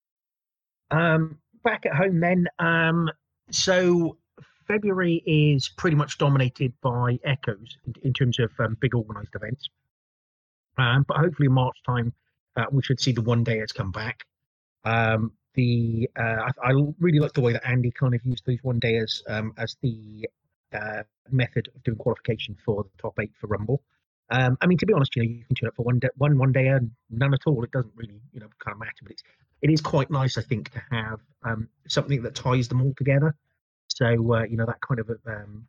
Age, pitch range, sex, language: 30-49, 110-140 Hz, male, English